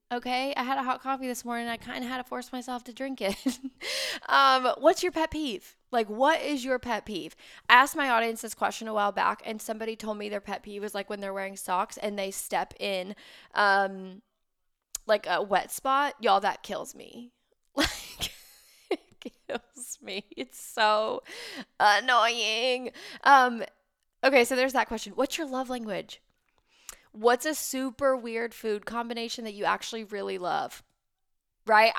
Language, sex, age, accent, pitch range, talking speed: English, female, 10-29, American, 210-265 Hz, 175 wpm